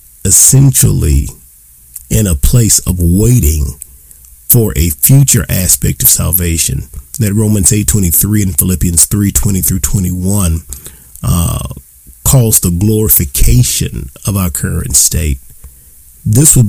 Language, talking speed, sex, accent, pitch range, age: English, 115 wpm, male, American, 70-105 Hz, 40-59